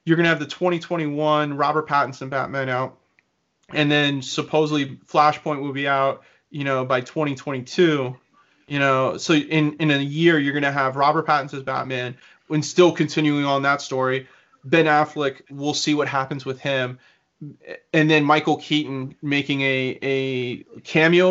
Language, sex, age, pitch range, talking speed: English, male, 30-49, 130-155 Hz, 160 wpm